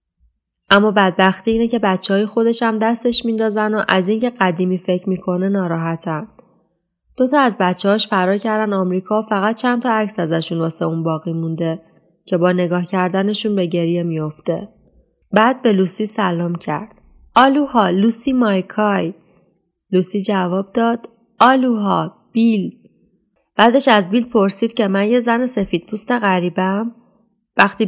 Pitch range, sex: 180-220 Hz, female